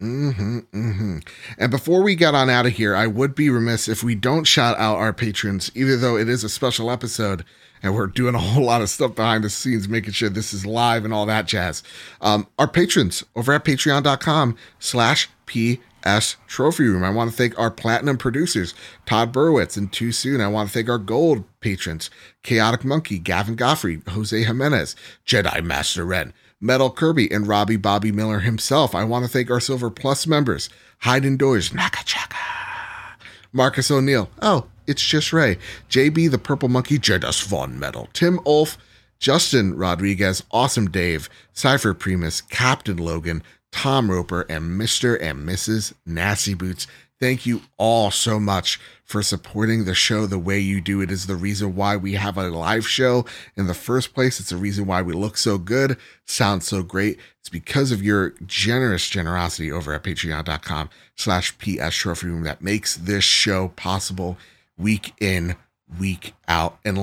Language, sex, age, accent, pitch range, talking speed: English, male, 30-49, American, 95-125 Hz, 175 wpm